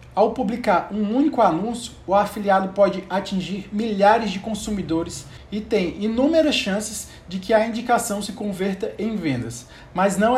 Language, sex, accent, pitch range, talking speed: Portuguese, male, Brazilian, 170-215 Hz, 150 wpm